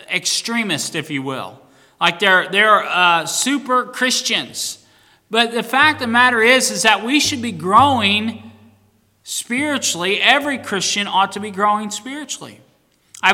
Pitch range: 180-225 Hz